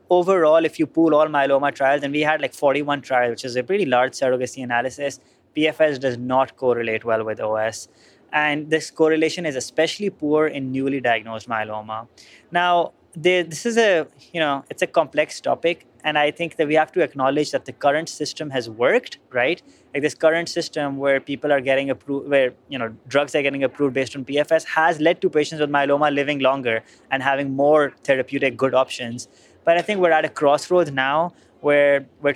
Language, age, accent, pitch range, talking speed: English, 20-39, Indian, 130-155 Hz, 195 wpm